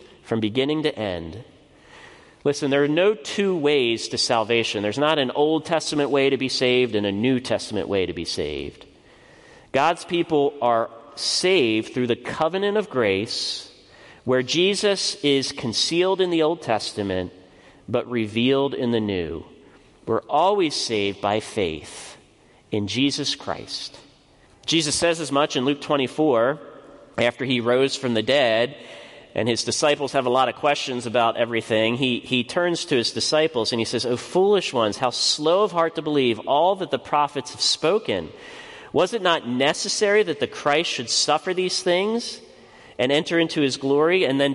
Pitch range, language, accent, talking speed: 120-165 Hz, English, American, 165 wpm